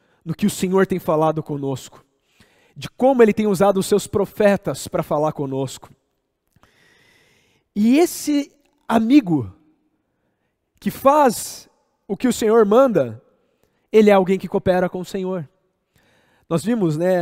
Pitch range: 180-245 Hz